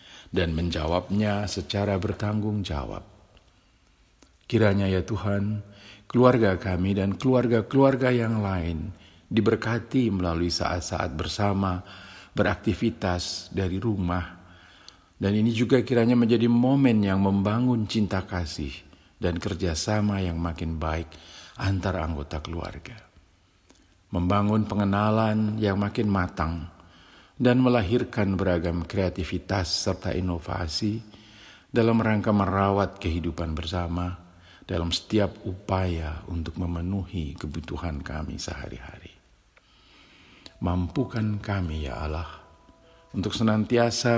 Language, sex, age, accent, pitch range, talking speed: Indonesian, male, 50-69, native, 85-110 Hz, 95 wpm